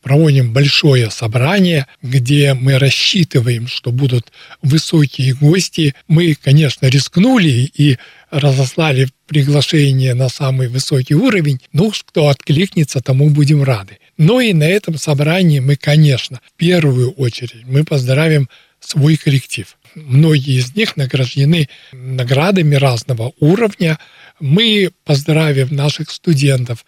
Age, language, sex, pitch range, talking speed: 60-79, Russian, male, 135-160 Hz, 115 wpm